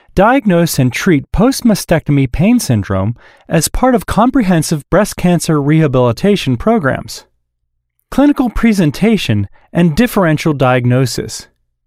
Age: 30-49